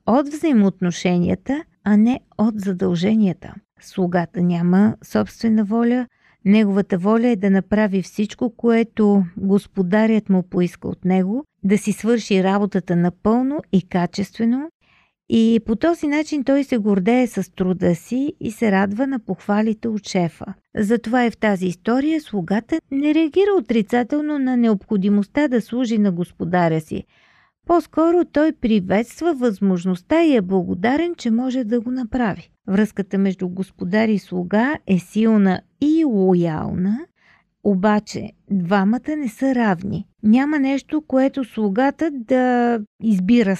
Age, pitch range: 50-69, 190-250 Hz